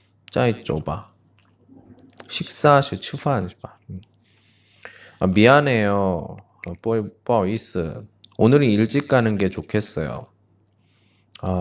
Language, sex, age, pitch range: Chinese, male, 20-39, 95-115 Hz